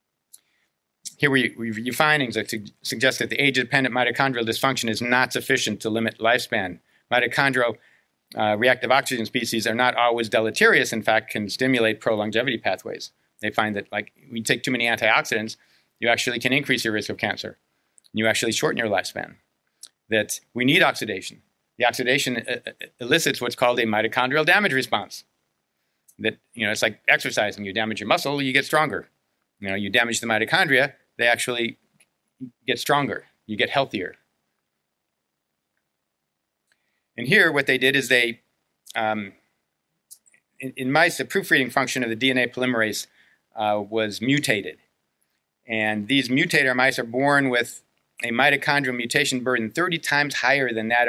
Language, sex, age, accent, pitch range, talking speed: English, male, 50-69, American, 110-135 Hz, 155 wpm